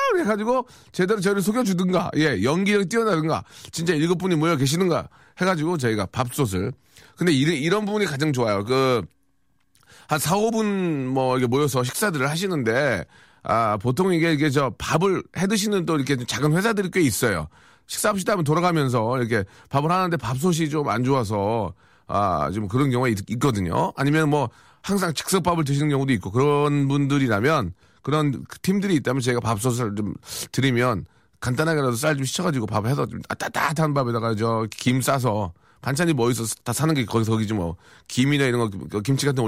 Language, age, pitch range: Korean, 40-59, 120-165 Hz